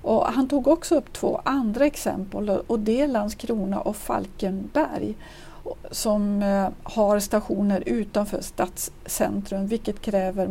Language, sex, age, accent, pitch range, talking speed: Swedish, female, 50-69, native, 200-275 Hz, 120 wpm